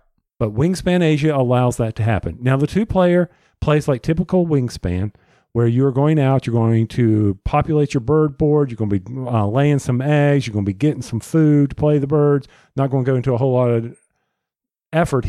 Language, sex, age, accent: English, male, 50-69, American